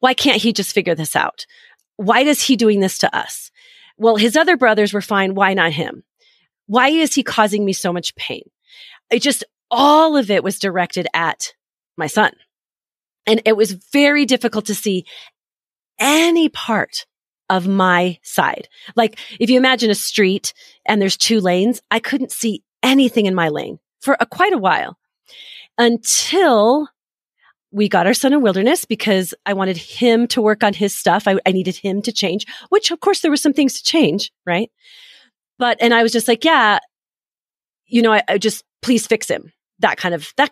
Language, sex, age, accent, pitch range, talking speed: English, female, 30-49, American, 195-280 Hz, 185 wpm